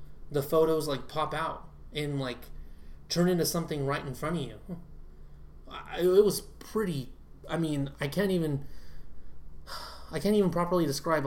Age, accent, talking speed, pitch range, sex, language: 20-39, American, 150 wpm, 130-145 Hz, male, English